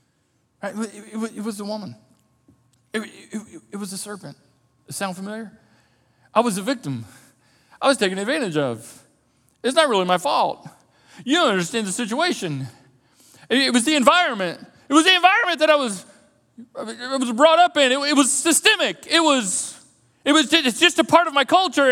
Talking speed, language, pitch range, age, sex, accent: 190 wpm, English, 190-255 Hz, 40-59, male, American